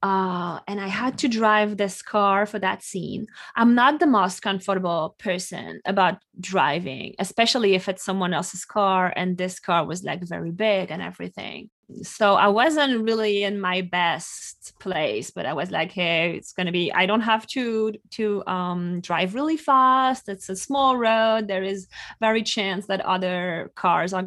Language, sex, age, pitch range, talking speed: English, female, 20-39, 185-230 Hz, 180 wpm